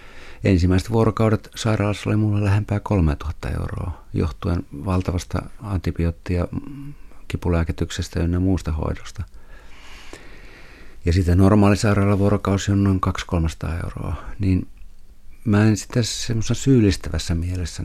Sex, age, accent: male, 50-69, native